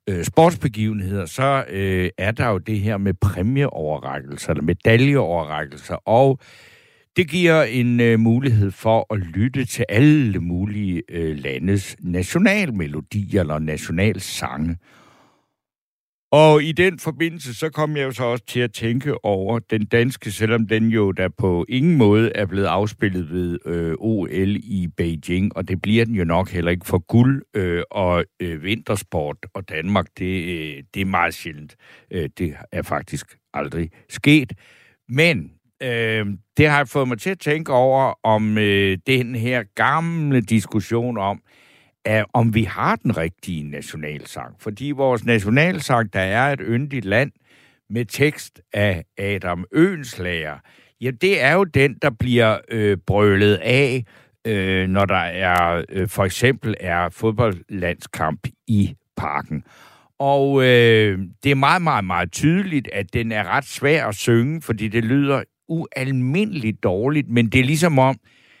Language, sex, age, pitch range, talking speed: Danish, male, 60-79, 95-130 Hz, 140 wpm